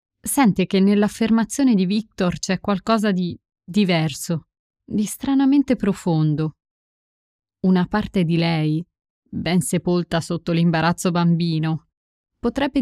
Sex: female